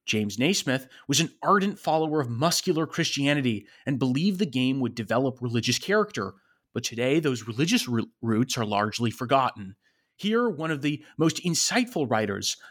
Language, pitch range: English, 120-160 Hz